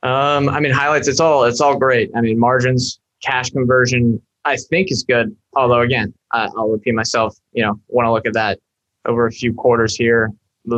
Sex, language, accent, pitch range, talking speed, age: male, English, American, 115-130 Hz, 200 wpm, 20-39